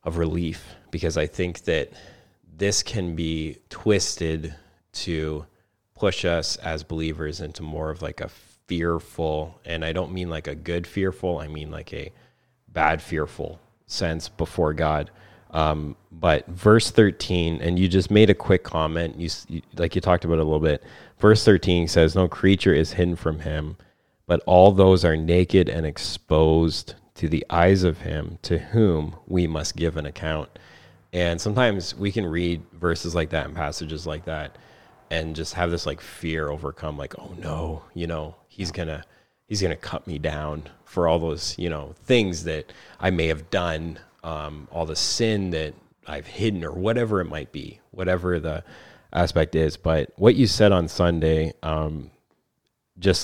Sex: male